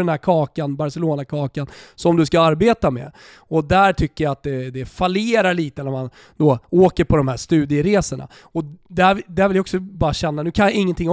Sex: male